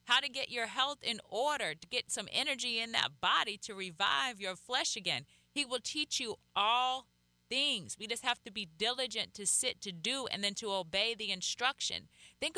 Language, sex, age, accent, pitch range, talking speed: English, female, 30-49, American, 170-270 Hz, 200 wpm